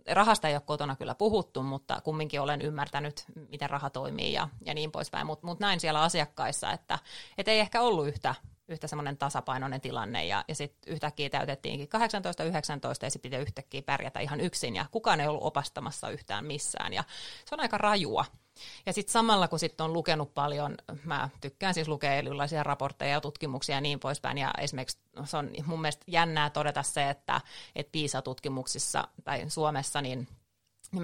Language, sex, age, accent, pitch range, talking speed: Finnish, female, 30-49, native, 145-165 Hz, 170 wpm